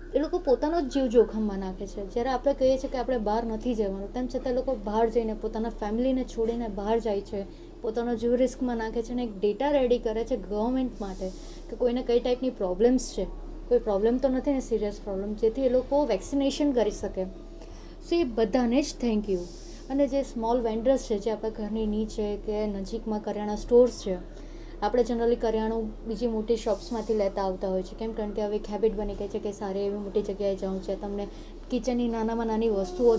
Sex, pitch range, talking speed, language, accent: female, 205-250 Hz, 185 wpm, Gujarati, native